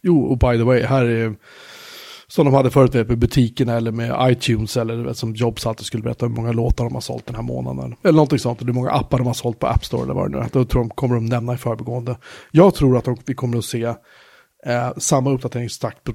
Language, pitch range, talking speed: Swedish, 115-135 Hz, 255 wpm